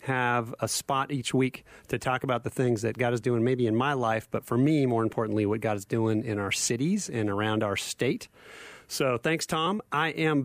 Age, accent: 30-49, American